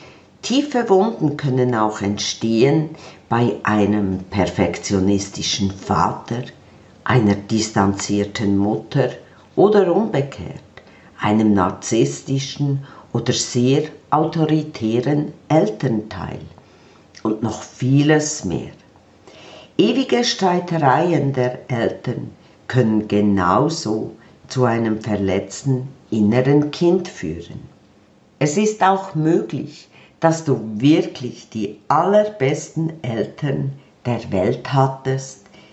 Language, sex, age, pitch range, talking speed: German, female, 50-69, 105-150 Hz, 80 wpm